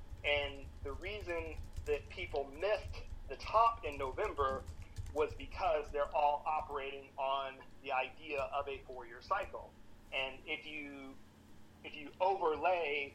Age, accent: 40-59, American